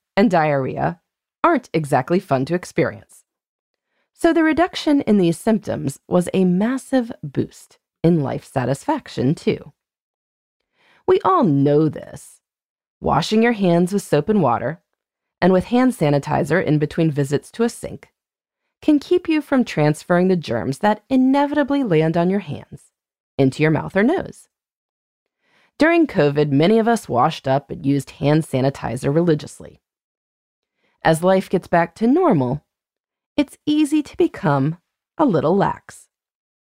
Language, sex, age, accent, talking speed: English, female, 30-49, American, 140 wpm